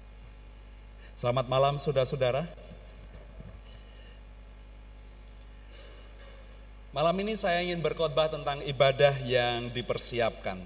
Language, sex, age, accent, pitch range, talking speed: Indonesian, male, 30-49, native, 125-160 Hz, 70 wpm